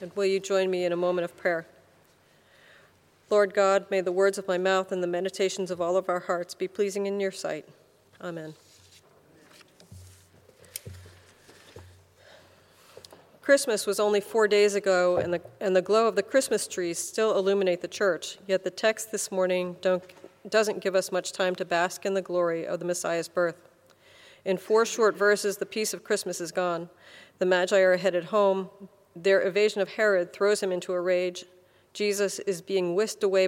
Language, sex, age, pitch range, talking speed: English, female, 40-59, 180-200 Hz, 175 wpm